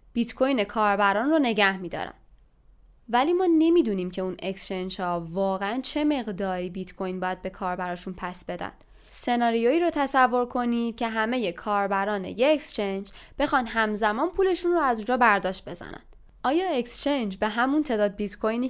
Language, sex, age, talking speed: Persian, female, 20-39, 155 wpm